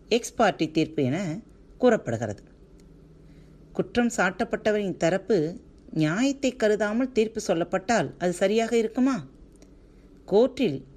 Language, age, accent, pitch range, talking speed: Tamil, 40-59, native, 155-225 Hz, 80 wpm